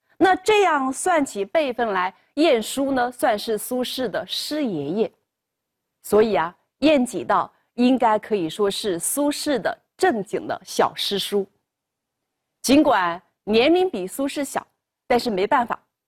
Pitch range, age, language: 205-310 Hz, 30-49, Chinese